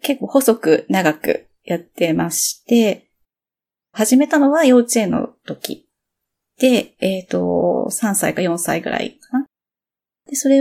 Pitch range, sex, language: 195-275 Hz, female, Japanese